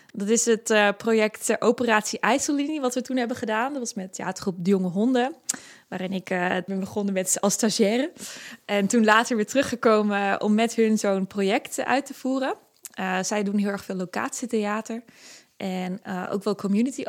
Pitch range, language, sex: 200-235 Hz, Dutch, female